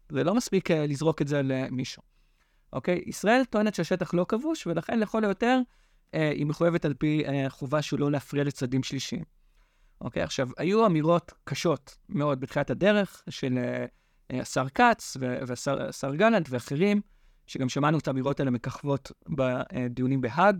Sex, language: male, English